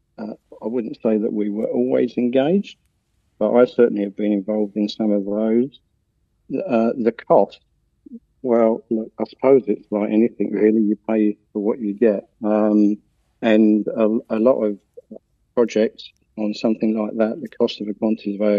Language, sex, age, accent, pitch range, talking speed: English, male, 50-69, British, 105-110 Hz, 170 wpm